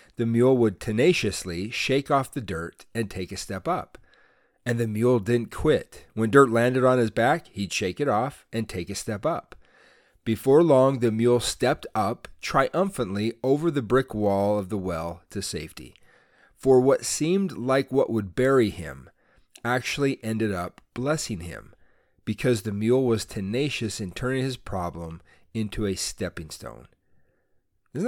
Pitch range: 110-135 Hz